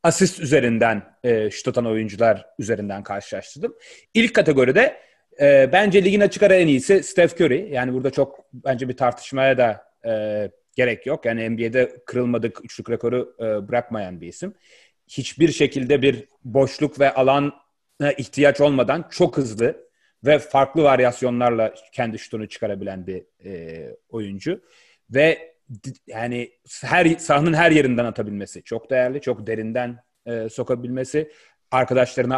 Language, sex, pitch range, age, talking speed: Turkish, male, 120-180 Hz, 30-49, 120 wpm